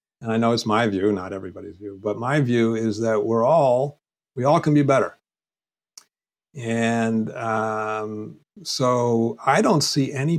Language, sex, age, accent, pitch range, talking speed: English, male, 50-69, American, 110-145 Hz, 160 wpm